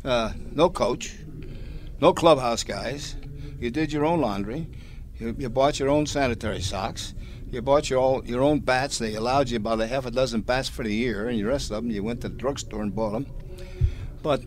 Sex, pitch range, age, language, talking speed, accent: male, 110-135 Hz, 60-79, English, 210 wpm, American